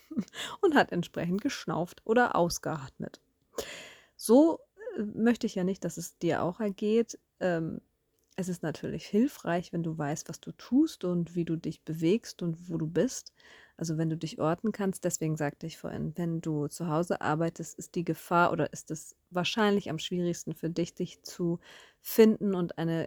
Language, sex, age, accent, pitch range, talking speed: German, female, 30-49, German, 170-210 Hz, 170 wpm